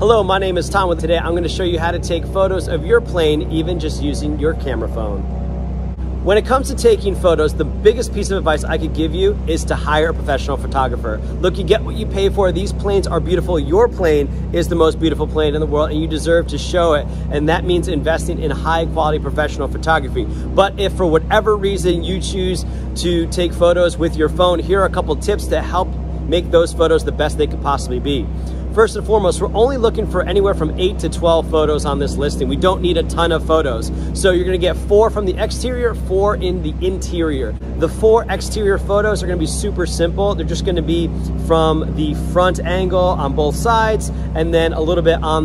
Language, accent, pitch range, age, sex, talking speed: English, American, 160-195 Hz, 30-49, male, 225 wpm